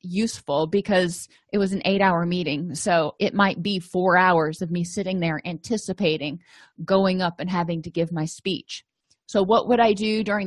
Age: 30-49